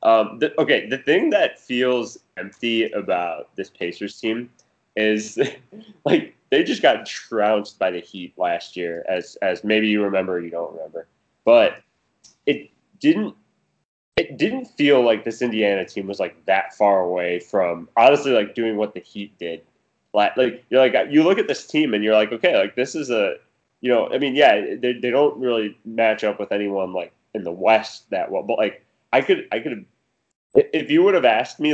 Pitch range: 100-125 Hz